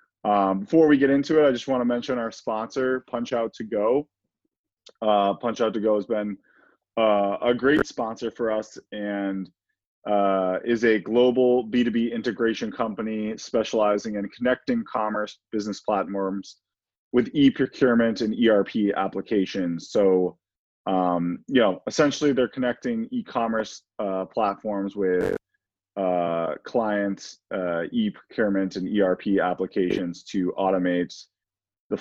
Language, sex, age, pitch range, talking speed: English, male, 20-39, 90-115 Hz, 130 wpm